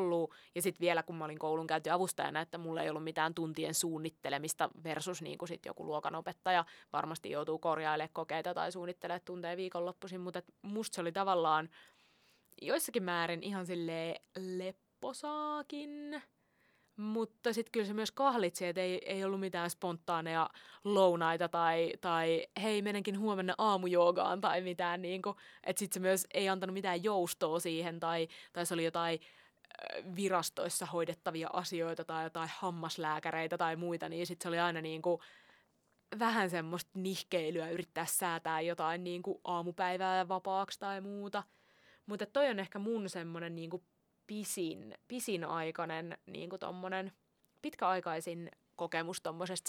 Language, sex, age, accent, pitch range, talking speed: Finnish, female, 20-39, native, 165-190 Hz, 140 wpm